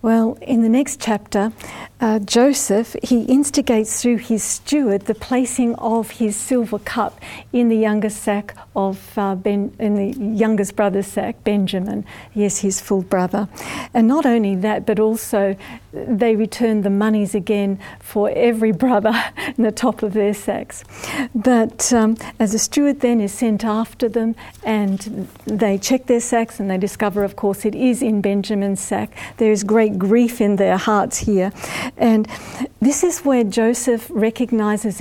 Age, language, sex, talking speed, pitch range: 50-69, English, female, 160 wpm, 200-235 Hz